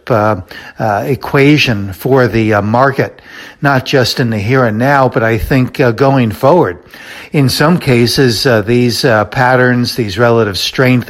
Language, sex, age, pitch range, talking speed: English, male, 60-79, 115-135 Hz, 160 wpm